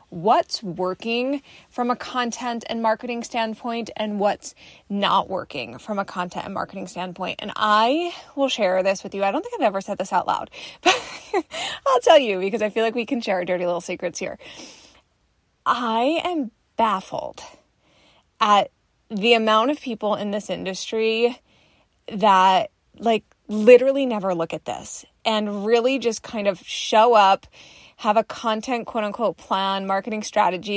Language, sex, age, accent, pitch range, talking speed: English, female, 20-39, American, 200-250 Hz, 170 wpm